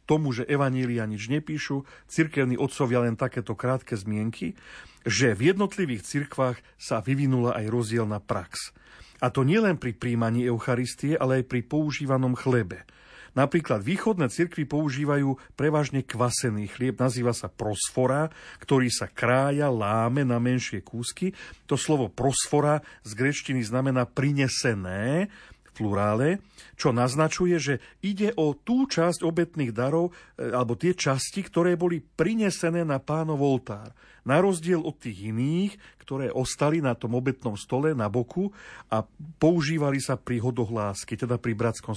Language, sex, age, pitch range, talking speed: Slovak, male, 40-59, 120-155 Hz, 135 wpm